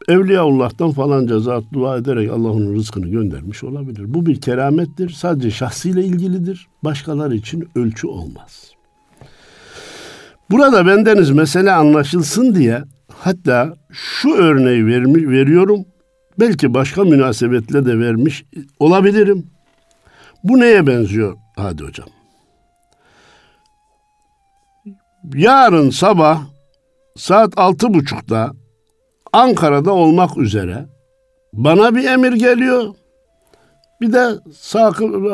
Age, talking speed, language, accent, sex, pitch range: 60-79, 95 wpm, Turkish, native, male, 125-205 Hz